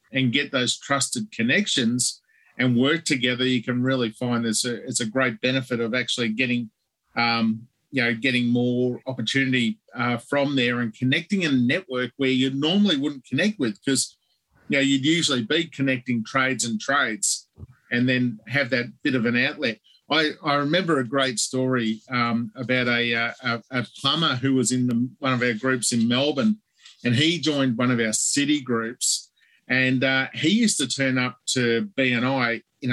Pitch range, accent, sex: 120-140 Hz, Australian, male